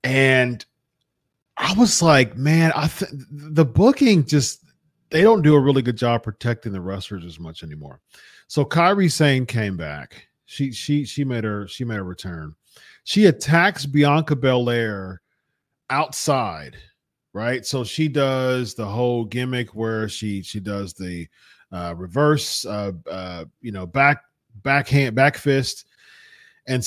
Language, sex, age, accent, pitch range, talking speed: English, male, 40-59, American, 115-150 Hz, 145 wpm